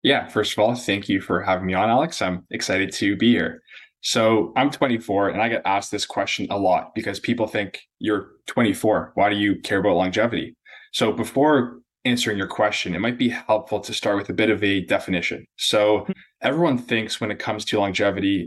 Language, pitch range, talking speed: English, 100-115 Hz, 205 wpm